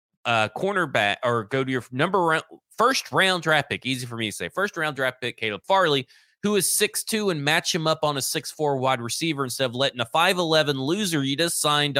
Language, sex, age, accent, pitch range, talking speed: English, male, 30-49, American, 120-160 Hz, 205 wpm